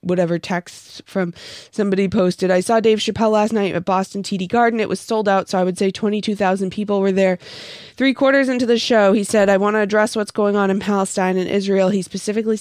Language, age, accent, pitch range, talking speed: English, 20-39, American, 185-210 Hz, 225 wpm